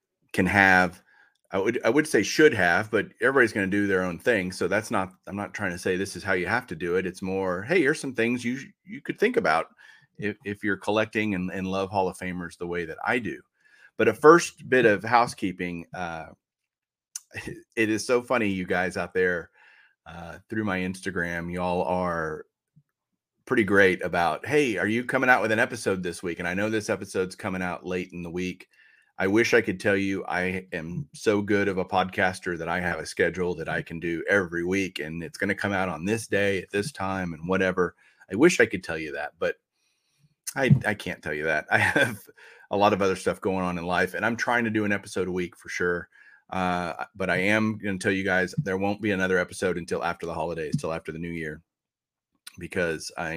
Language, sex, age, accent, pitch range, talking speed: English, male, 30-49, American, 90-100 Hz, 230 wpm